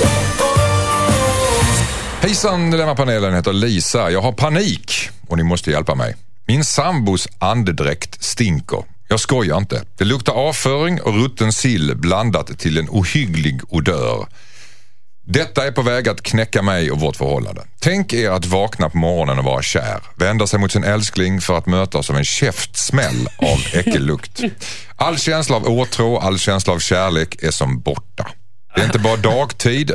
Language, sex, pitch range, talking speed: Swedish, male, 90-125 Hz, 160 wpm